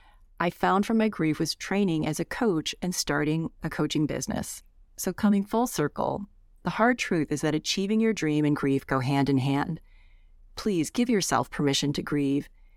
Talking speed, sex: 185 wpm, female